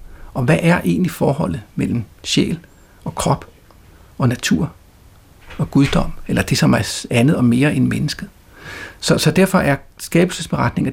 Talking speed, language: 150 wpm, Danish